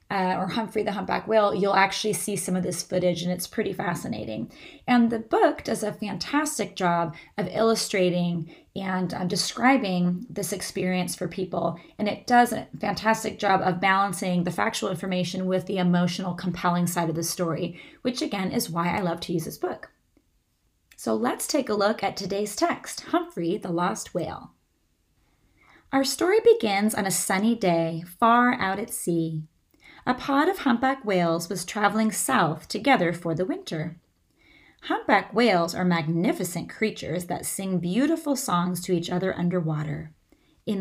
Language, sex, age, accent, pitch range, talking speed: English, female, 30-49, American, 175-235 Hz, 165 wpm